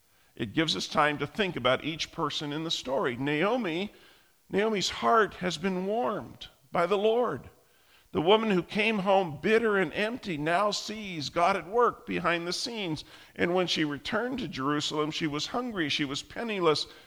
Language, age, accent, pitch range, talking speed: English, 50-69, American, 135-185 Hz, 170 wpm